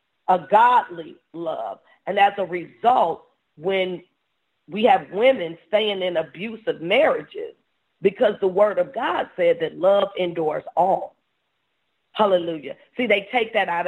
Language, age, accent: English, 40-59, American